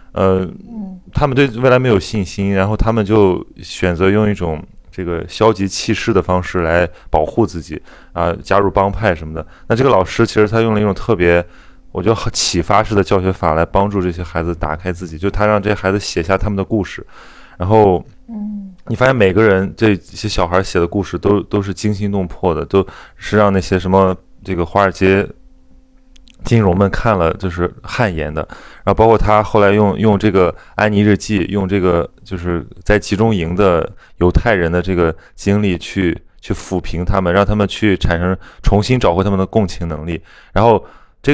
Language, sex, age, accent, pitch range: Chinese, male, 20-39, Polish, 90-110 Hz